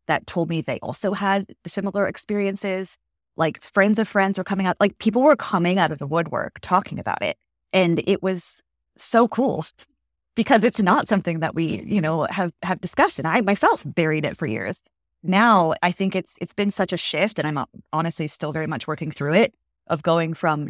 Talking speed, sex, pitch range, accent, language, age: 205 wpm, female, 155-195 Hz, American, English, 20-39